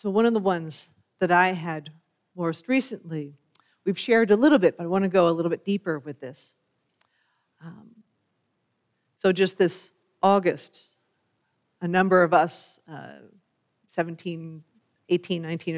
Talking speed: 150 wpm